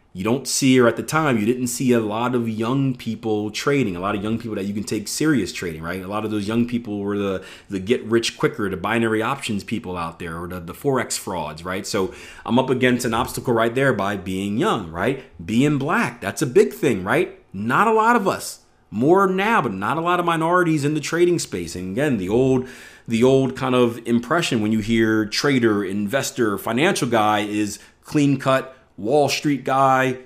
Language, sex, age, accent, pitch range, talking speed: English, male, 30-49, American, 105-140 Hz, 215 wpm